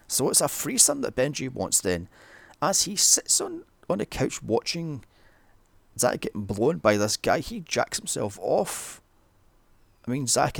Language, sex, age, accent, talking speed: English, male, 30-49, British, 165 wpm